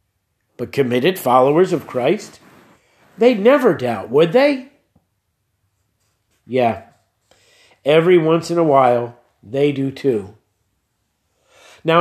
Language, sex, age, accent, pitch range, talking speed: English, male, 50-69, American, 135-180 Hz, 100 wpm